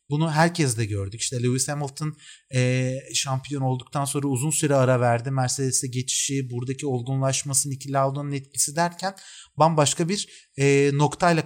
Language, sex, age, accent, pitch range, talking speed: Turkish, male, 30-49, native, 130-165 Hz, 130 wpm